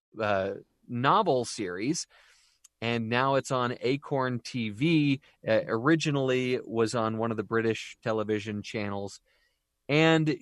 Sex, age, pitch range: male, 30-49, 115-145 Hz